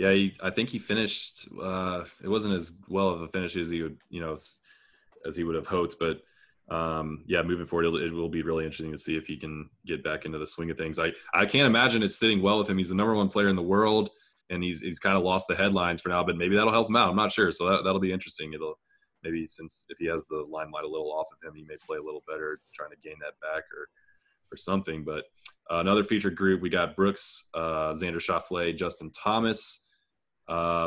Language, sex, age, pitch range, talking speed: English, male, 20-39, 80-105 Hz, 255 wpm